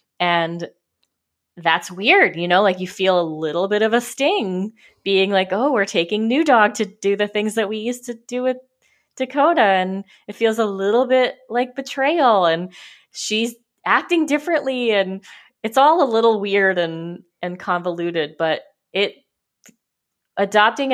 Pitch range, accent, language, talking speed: 175-230 Hz, American, English, 160 wpm